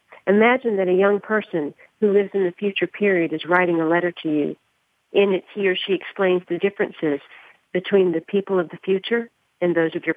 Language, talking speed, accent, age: English, 205 wpm, American, 50-69